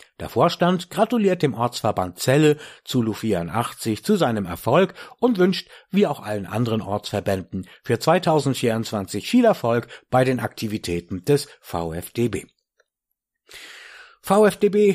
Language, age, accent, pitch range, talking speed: German, 60-79, German, 105-160 Hz, 115 wpm